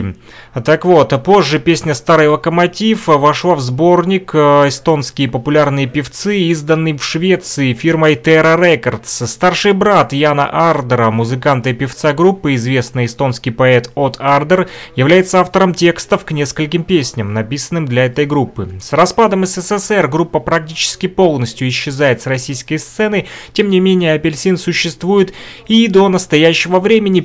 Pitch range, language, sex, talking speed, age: 130-175 Hz, Russian, male, 130 wpm, 30-49